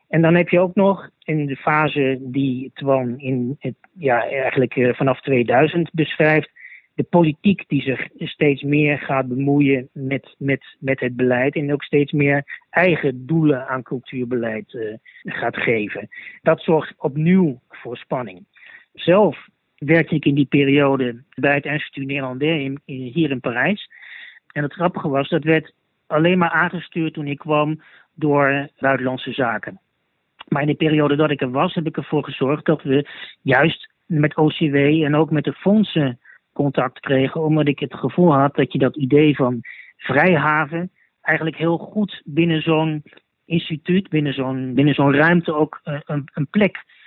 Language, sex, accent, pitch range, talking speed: Dutch, male, Dutch, 135-165 Hz, 160 wpm